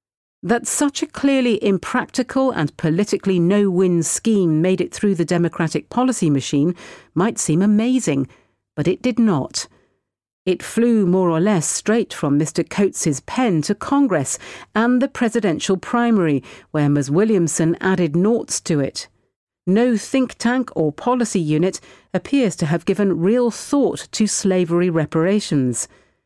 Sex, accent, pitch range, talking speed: female, British, 155-220 Hz, 140 wpm